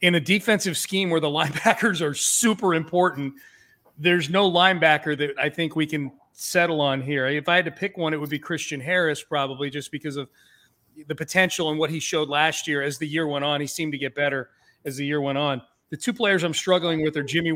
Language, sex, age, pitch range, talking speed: English, male, 40-59, 145-175 Hz, 230 wpm